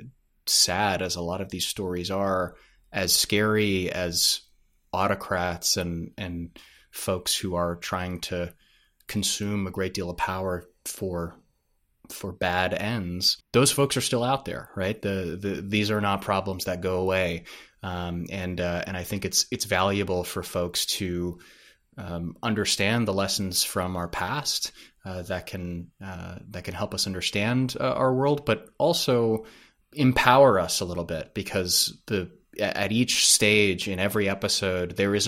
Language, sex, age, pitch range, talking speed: English, male, 20-39, 90-105 Hz, 160 wpm